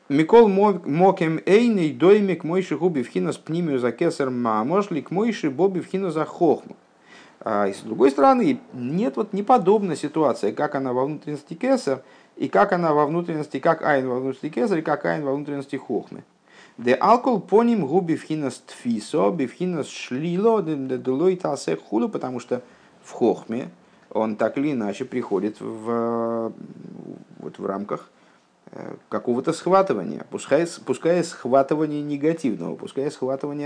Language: Russian